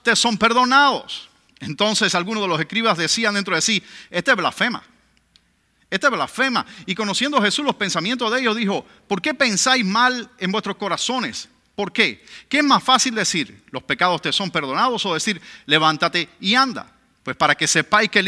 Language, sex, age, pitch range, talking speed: Spanish, male, 40-59, 175-230 Hz, 175 wpm